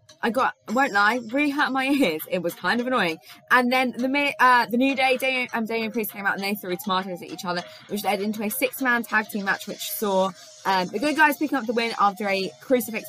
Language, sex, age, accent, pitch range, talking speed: English, female, 20-39, British, 195-260 Hz, 250 wpm